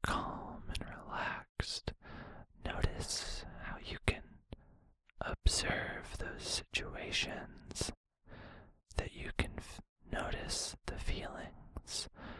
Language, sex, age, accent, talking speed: English, male, 20-39, American, 80 wpm